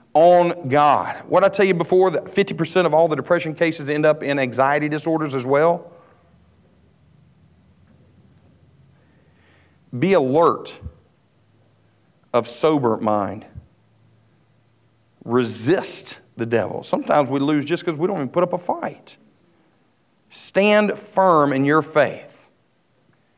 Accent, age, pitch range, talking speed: American, 40-59, 135-185 Hz, 115 wpm